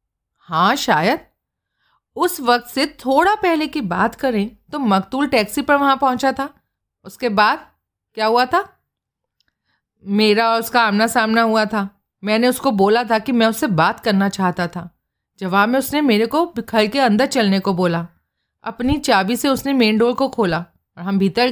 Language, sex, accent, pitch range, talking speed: Hindi, female, native, 195-250 Hz, 170 wpm